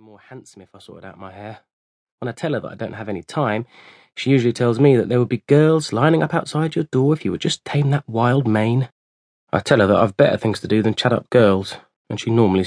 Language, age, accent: English, 20-39, British